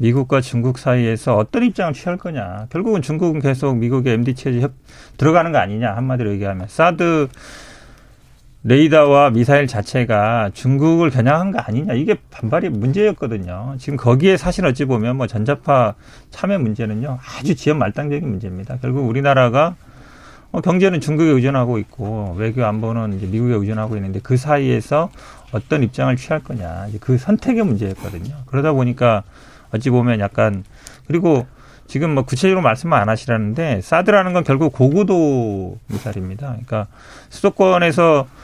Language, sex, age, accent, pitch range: Korean, male, 40-59, native, 110-150 Hz